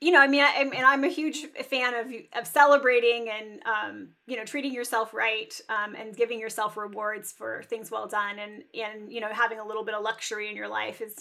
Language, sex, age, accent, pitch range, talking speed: English, female, 30-49, American, 220-265 Hz, 230 wpm